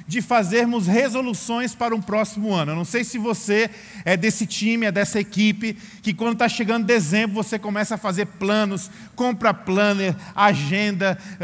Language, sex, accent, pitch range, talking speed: Portuguese, male, Brazilian, 195-225 Hz, 165 wpm